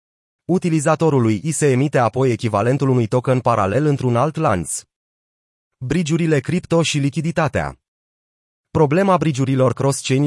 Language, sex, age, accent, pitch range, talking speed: Romanian, male, 30-49, native, 120-150 Hz, 110 wpm